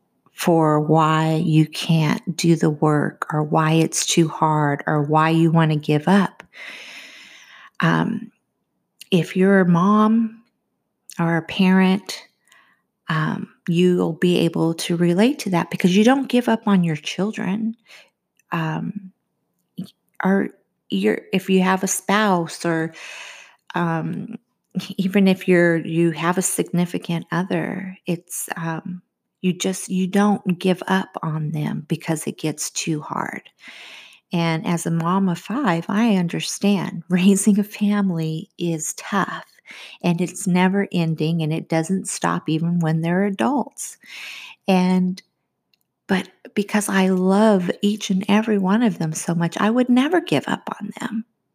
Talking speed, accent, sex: 140 wpm, American, female